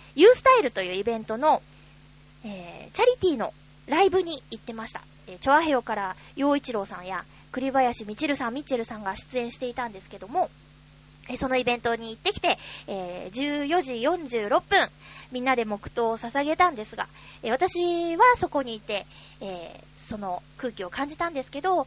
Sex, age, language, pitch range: female, 20-39, Japanese, 225-330 Hz